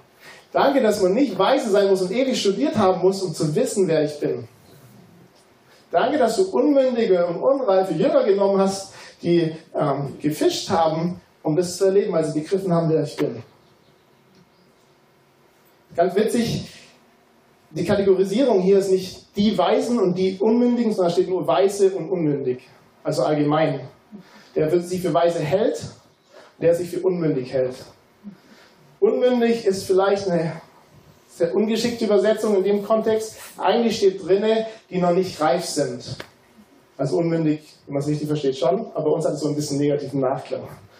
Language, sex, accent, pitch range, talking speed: German, male, German, 160-200 Hz, 160 wpm